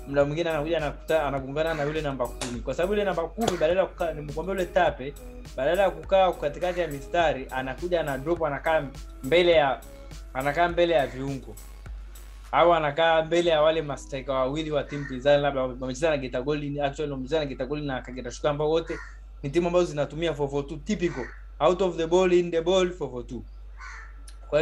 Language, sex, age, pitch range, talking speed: Swahili, male, 20-39, 145-205 Hz, 160 wpm